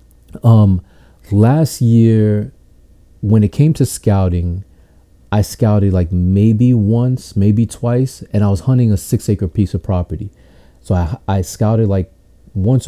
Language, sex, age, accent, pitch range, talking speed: English, male, 30-49, American, 90-105 Hz, 145 wpm